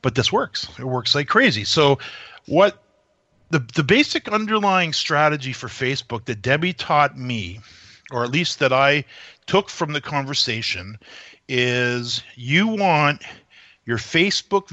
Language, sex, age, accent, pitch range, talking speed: English, male, 40-59, American, 120-160 Hz, 140 wpm